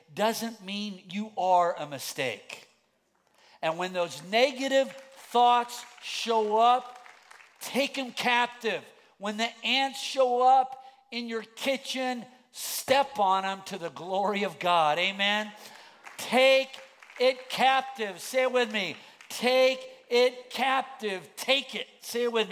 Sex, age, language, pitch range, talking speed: male, 50-69, English, 190-255 Hz, 130 wpm